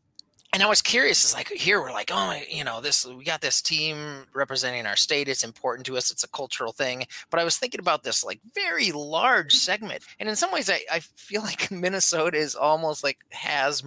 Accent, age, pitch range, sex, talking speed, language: American, 30-49, 115-155 Hz, male, 220 wpm, English